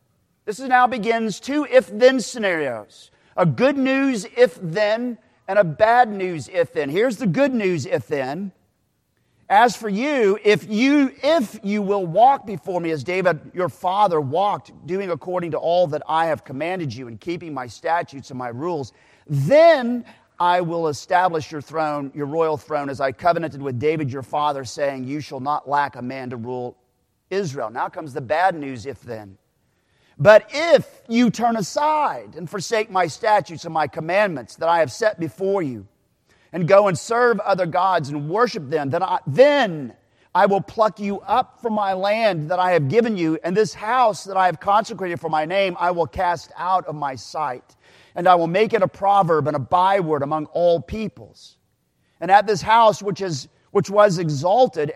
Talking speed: 180 wpm